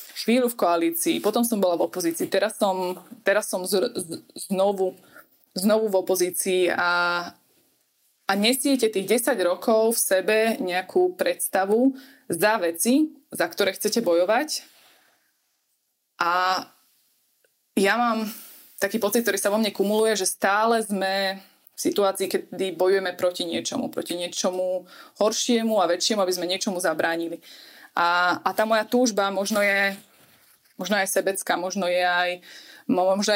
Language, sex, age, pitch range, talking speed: Slovak, female, 20-39, 185-220 Hz, 130 wpm